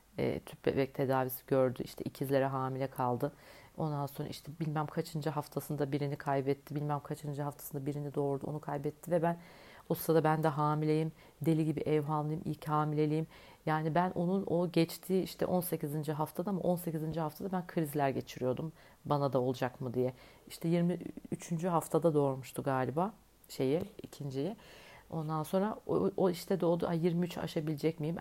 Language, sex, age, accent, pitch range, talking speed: Turkish, female, 40-59, native, 145-185 Hz, 150 wpm